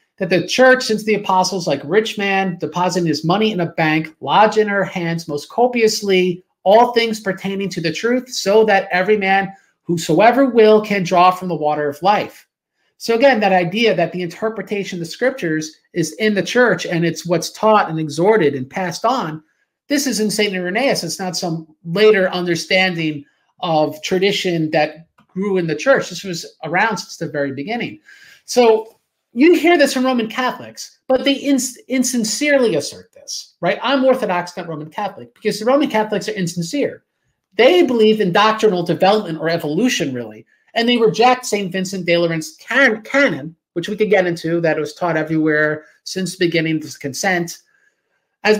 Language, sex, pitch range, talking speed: English, male, 170-225 Hz, 175 wpm